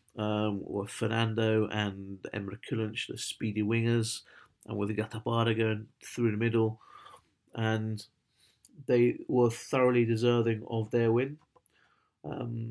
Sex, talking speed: male, 125 wpm